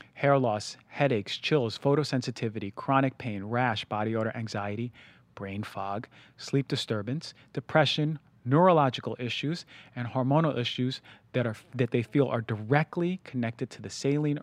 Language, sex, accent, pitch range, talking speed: English, male, American, 115-140 Hz, 135 wpm